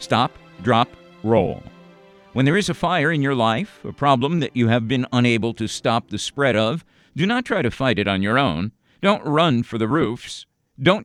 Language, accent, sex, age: English, American, male, 50-69